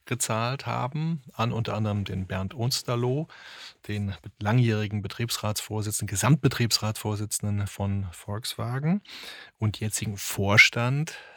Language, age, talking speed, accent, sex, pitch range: German, 30-49, 90 wpm, German, male, 105-120 Hz